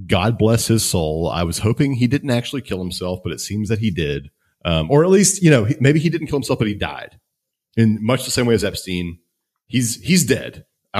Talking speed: 235 wpm